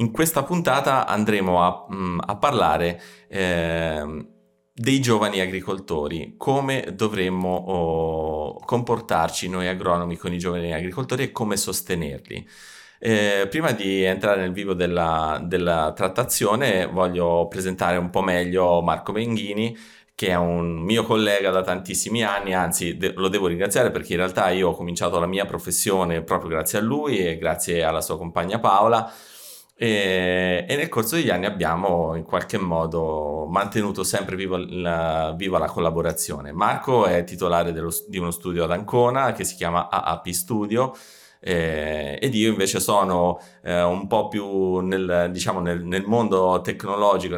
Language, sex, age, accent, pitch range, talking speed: Italian, male, 30-49, native, 85-100 Hz, 145 wpm